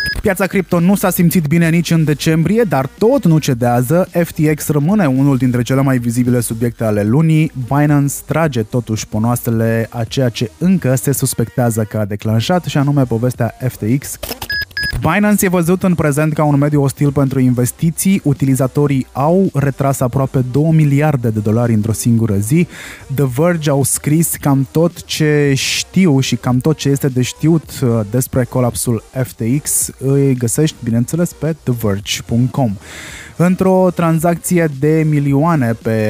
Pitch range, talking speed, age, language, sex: 125-155 Hz, 150 wpm, 20-39, Romanian, male